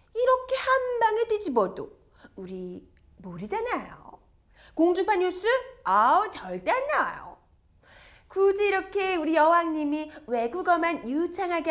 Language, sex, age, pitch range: Korean, female, 30-49, 300-400 Hz